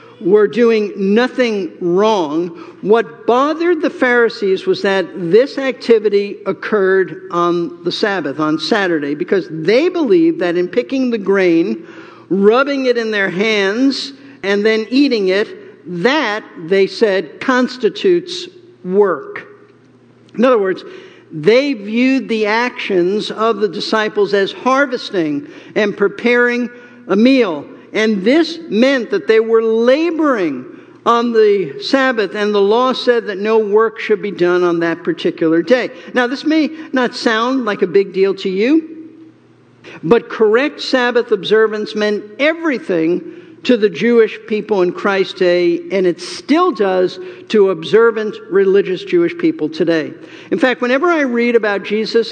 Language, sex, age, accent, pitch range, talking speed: English, male, 50-69, American, 195-275 Hz, 140 wpm